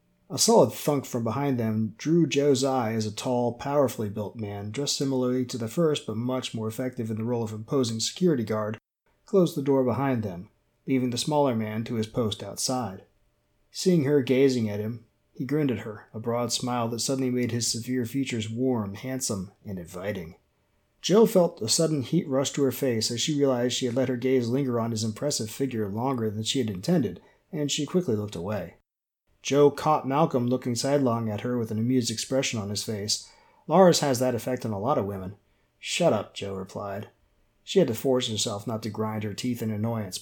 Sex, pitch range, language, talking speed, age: male, 110-135 Hz, English, 205 wpm, 30-49